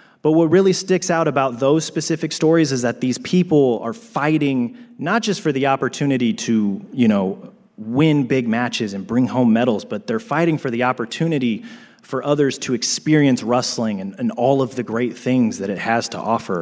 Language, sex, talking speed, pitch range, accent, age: English, male, 190 wpm, 125-165 Hz, American, 30-49